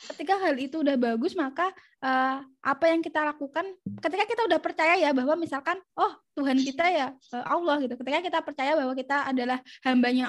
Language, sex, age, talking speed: Indonesian, female, 20-39, 180 wpm